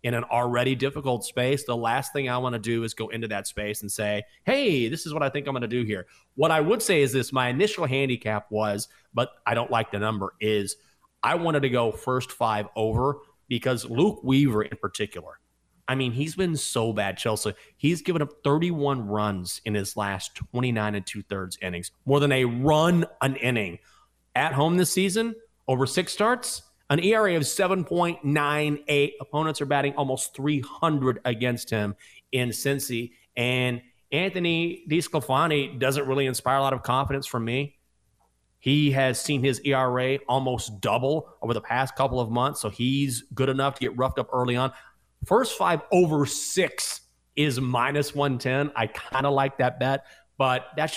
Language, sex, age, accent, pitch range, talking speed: English, male, 30-49, American, 115-145 Hz, 180 wpm